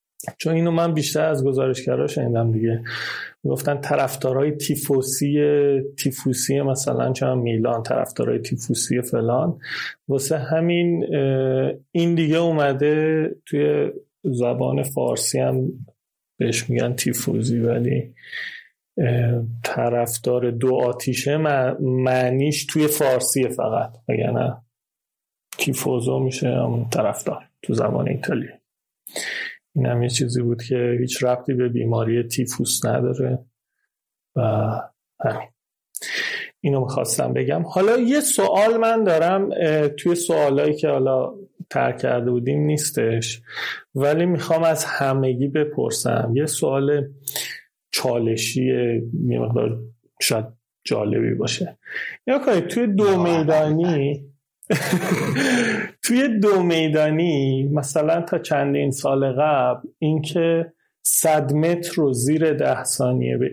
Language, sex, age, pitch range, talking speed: Persian, male, 30-49, 125-160 Hz, 100 wpm